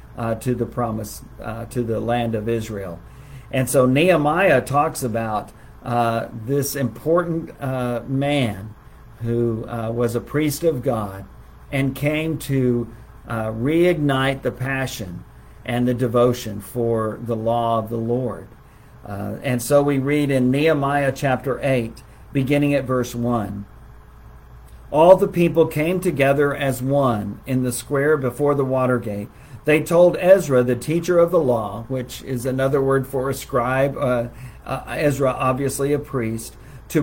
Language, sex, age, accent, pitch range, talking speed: English, male, 50-69, American, 115-145 Hz, 150 wpm